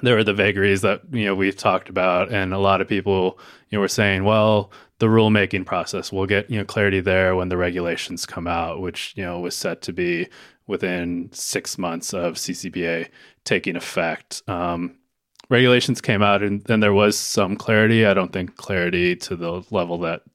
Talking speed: 195 wpm